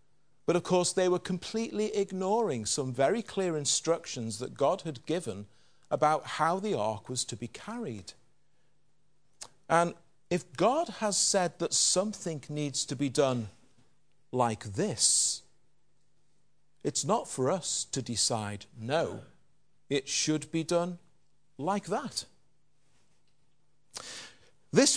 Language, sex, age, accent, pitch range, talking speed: English, male, 40-59, British, 125-170 Hz, 120 wpm